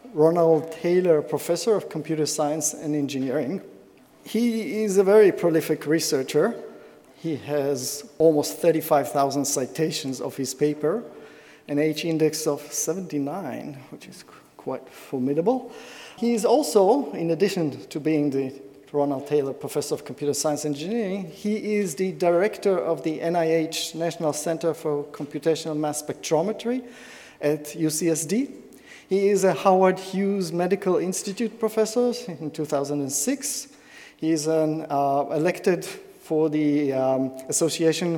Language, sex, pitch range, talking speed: English, male, 150-195 Hz, 125 wpm